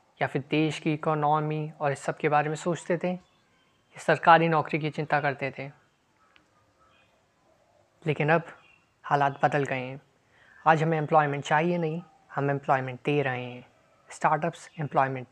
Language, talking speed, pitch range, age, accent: Hindi, 145 wpm, 145-170 Hz, 20-39, native